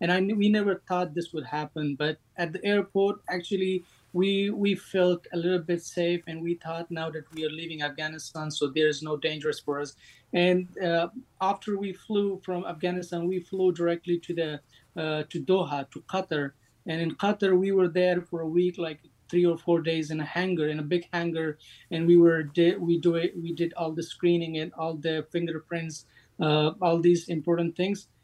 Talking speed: 205 wpm